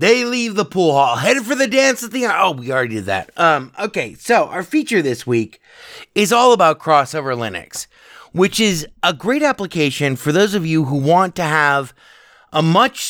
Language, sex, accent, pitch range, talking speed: English, male, American, 150-220 Hz, 195 wpm